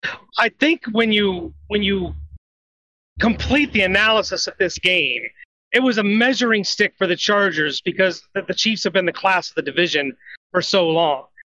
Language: English